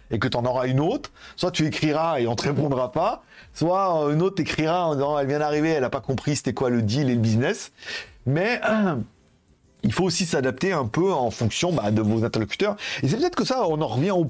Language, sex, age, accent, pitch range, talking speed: French, male, 40-59, French, 110-160 Hz, 250 wpm